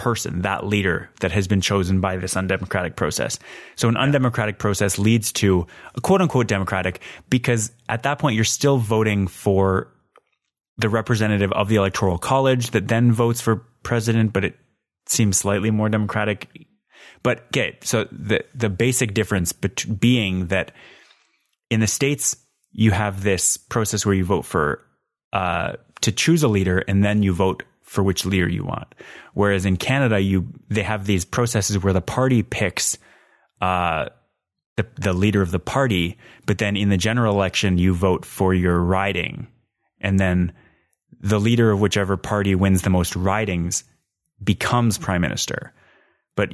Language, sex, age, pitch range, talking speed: English, male, 20-39, 95-110 Hz, 160 wpm